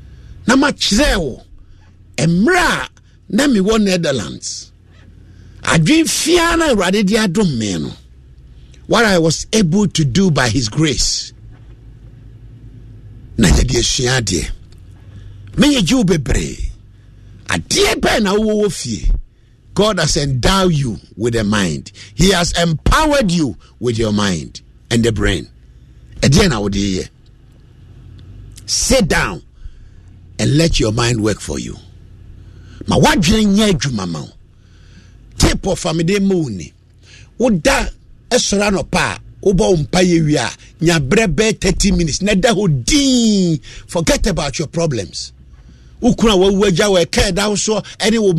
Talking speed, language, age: 125 wpm, English, 50-69